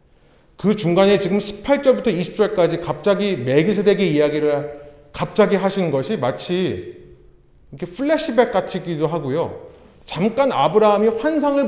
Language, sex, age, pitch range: Korean, male, 30-49, 150-240 Hz